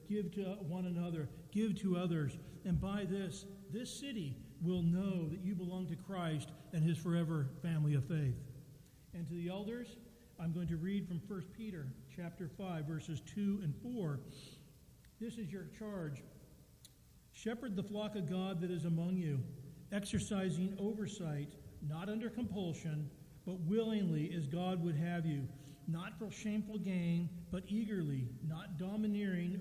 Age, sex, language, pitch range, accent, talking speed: 50-69, male, English, 155-195 Hz, American, 150 wpm